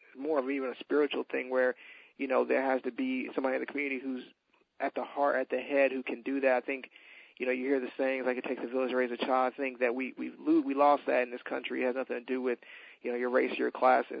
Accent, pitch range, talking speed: American, 125-140 Hz, 290 wpm